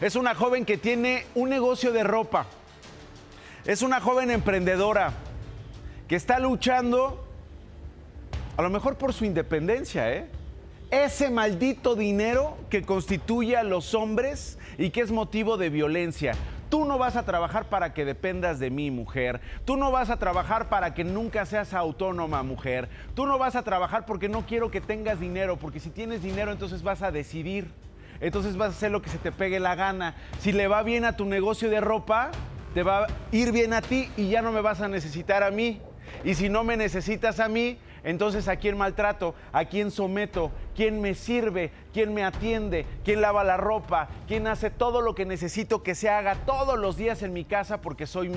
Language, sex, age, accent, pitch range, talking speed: Spanish, male, 40-59, Mexican, 170-225 Hz, 190 wpm